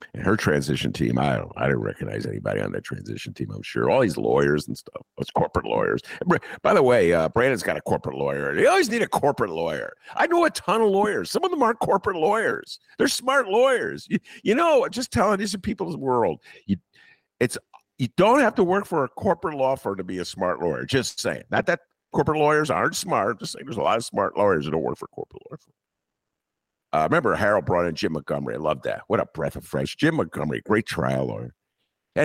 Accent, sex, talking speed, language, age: American, male, 225 wpm, English, 50-69